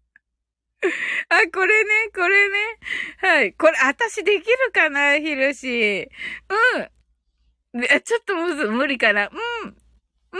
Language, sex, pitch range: Japanese, female, 260-420 Hz